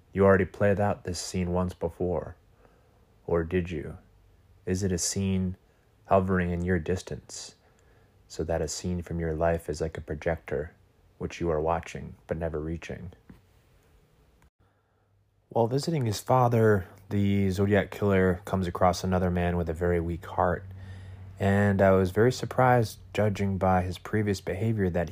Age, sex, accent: 30-49, male, American